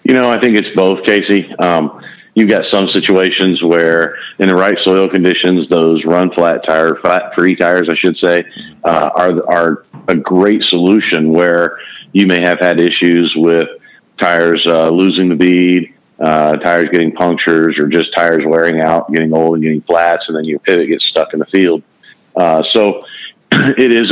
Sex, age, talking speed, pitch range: male, 40-59, 180 wpm, 85-95 Hz